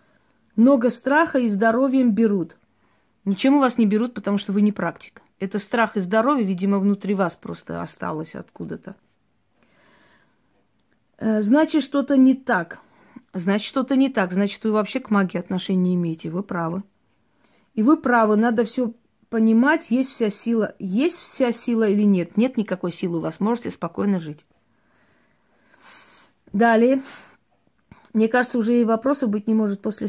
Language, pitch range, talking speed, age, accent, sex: Russian, 195-230 Hz, 150 wpm, 30-49, native, female